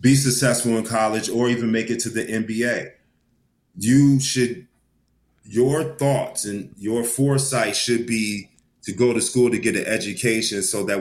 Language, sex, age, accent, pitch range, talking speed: English, male, 30-49, American, 105-125 Hz, 165 wpm